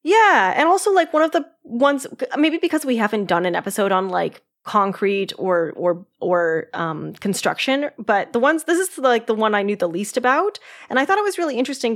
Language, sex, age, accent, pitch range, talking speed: English, female, 20-39, American, 190-270 Hz, 225 wpm